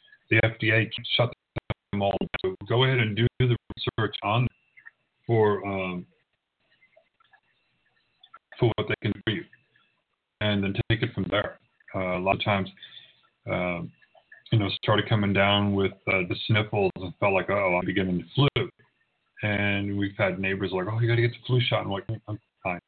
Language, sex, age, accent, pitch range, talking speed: English, male, 40-59, American, 100-120 Hz, 190 wpm